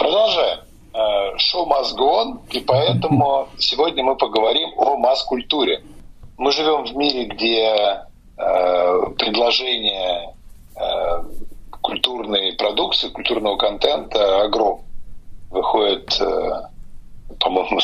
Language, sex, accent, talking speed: Russian, male, native, 75 wpm